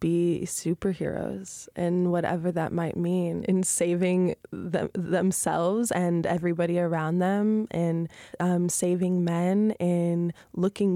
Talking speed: 110 wpm